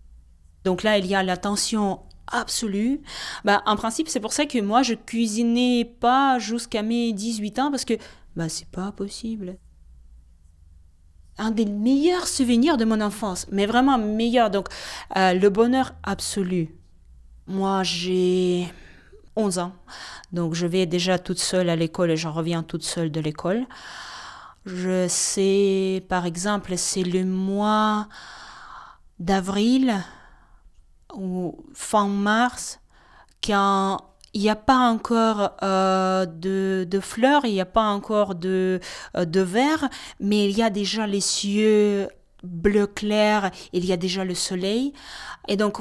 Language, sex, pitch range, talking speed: French, female, 185-225 Hz, 145 wpm